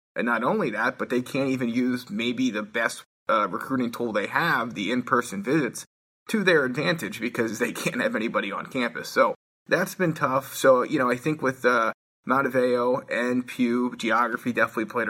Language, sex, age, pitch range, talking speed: English, male, 20-39, 110-135 Hz, 185 wpm